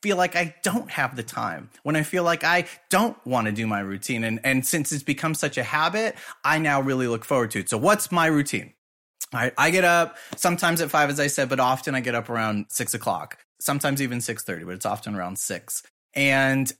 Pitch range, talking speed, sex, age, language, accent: 120-150 Hz, 230 wpm, male, 30-49, English, American